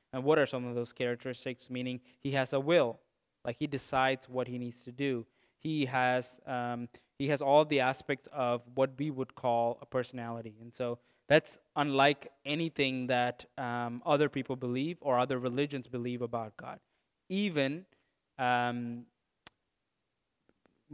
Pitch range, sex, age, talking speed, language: 125-145 Hz, male, 20-39, 150 wpm, English